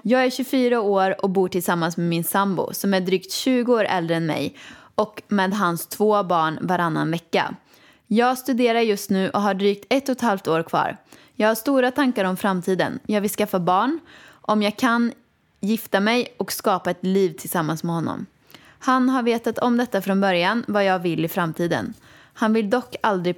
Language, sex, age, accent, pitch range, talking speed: Swedish, female, 20-39, native, 185-235 Hz, 195 wpm